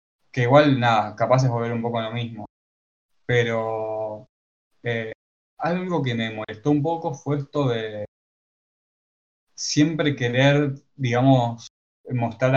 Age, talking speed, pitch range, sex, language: 10-29, 125 wpm, 110-135 Hz, male, Spanish